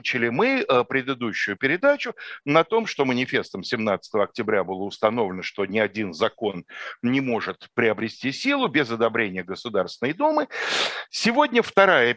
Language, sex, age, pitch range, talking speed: Russian, male, 60-79, 110-175 Hz, 130 wpm